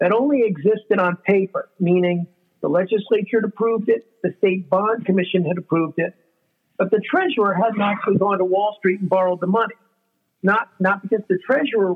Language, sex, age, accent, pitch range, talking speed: English, male, 50-69, American, 185-225 Hz, 180 wpm